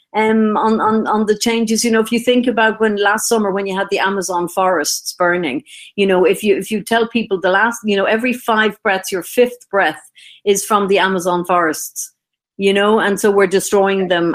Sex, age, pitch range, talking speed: female, 50-69, 195-225 Hz, 220 wpm